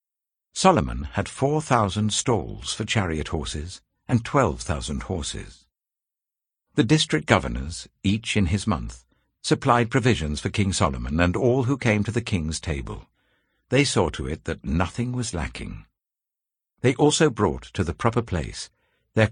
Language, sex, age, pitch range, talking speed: English, male, 60-79, 80-125 Hz, 140 wpm